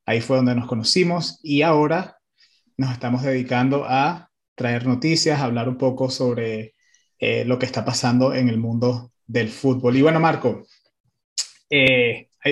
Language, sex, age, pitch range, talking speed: Spanish, male, 30-49, 125-150 Hz, 155 wpm